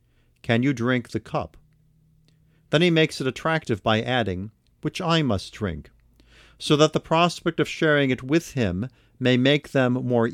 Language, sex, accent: English, male, American